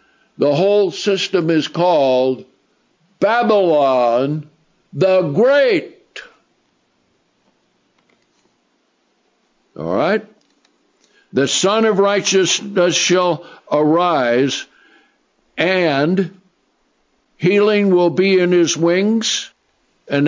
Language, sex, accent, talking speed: English, male, American, 70 wpm